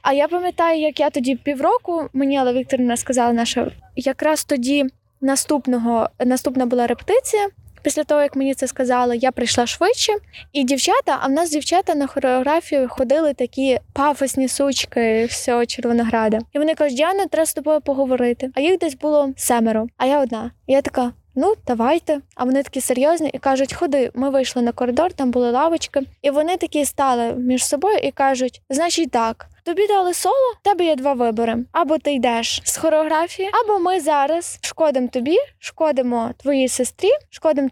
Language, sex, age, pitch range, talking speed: Ukrainian, female, 20-39, 255-320 Hz, 170 wpm